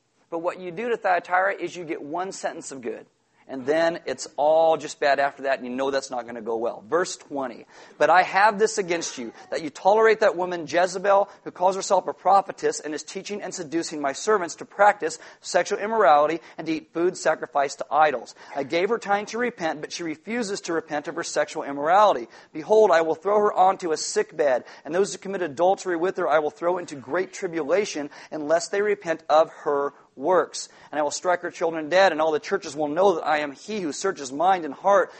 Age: 40-59